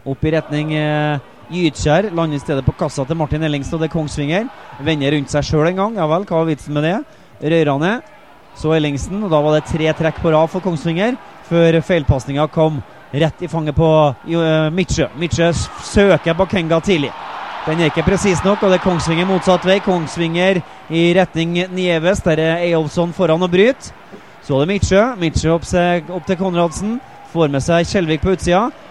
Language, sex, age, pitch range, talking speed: English, male, 30-49, 155-185 Hz, 190 wpm